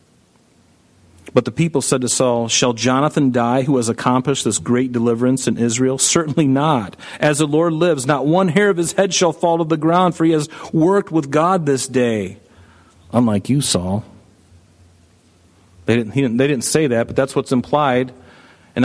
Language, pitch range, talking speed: English, 115-150 Hz, 185 wpm